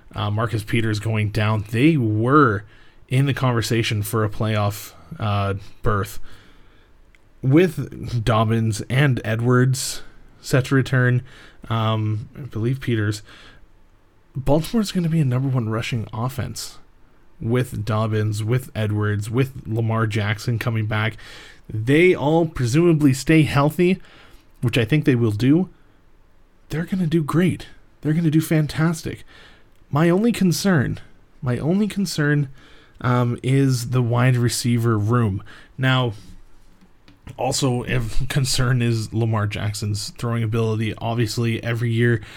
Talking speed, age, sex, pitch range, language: 125 wpm, 20-39, male, 110-145 Hz, English